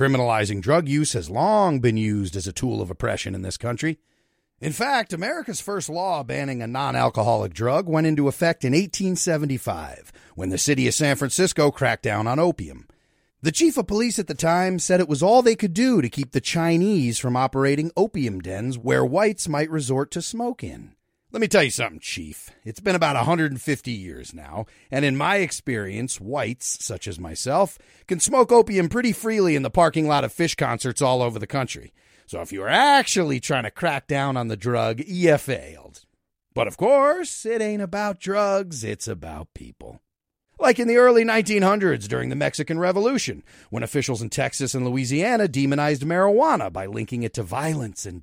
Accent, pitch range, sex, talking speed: American, 120-180 Hz, male, 190 wpm